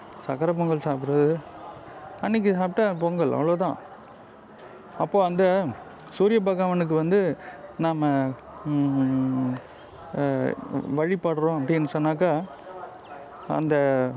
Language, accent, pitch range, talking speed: Tamil, native, 140-175 Hz, 70 wpm